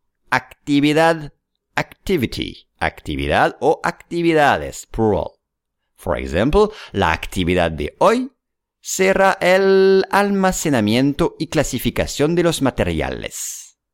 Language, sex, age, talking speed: English, male, 50-69, 85 wpm